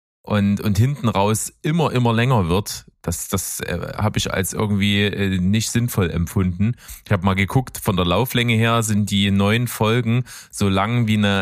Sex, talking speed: male, 185 wpm